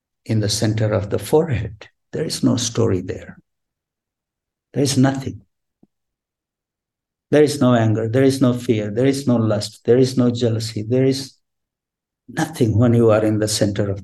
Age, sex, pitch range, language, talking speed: 60-79, male, 105-130 Hz, English, 170 wpm